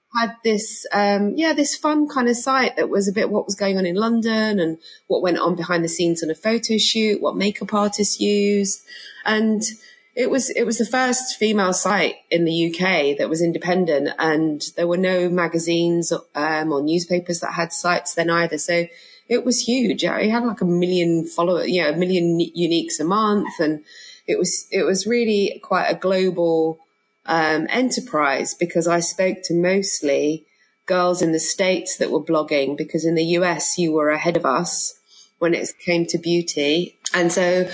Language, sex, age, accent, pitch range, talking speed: English, female, 20-39, British, 160-210 Hz, 190 wpm